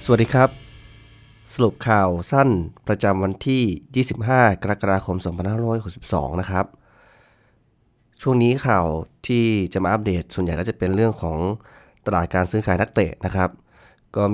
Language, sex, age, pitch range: Thai, male, 20-39, 85-110 Hz